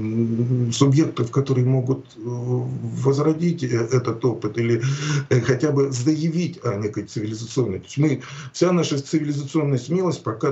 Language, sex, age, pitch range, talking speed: Russian, male, 40-59, 115-140 Hz, 105 wpm